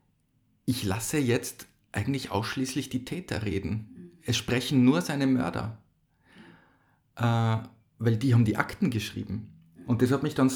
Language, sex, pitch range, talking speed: German, male, 110-130 Hz, 140 wpm